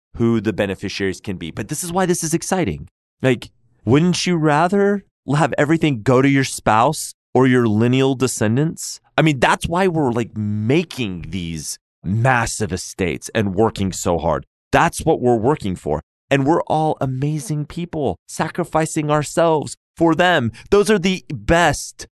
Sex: male